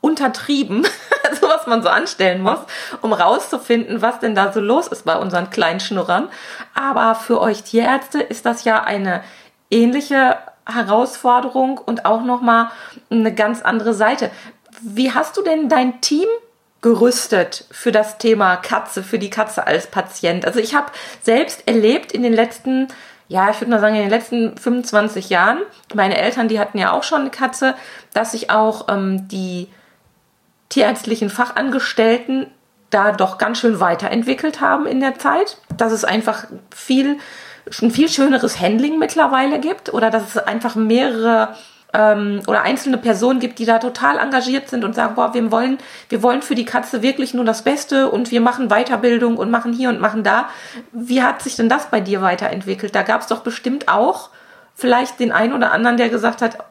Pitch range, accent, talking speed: 220-260 Hz, German, 175 wpm